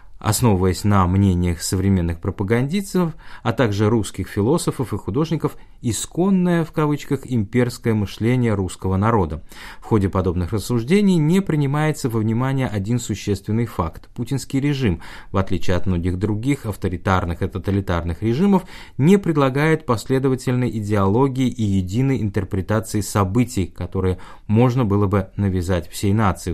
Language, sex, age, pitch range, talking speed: Russian, male, 20-39, 95-125 Hz, 125 wpm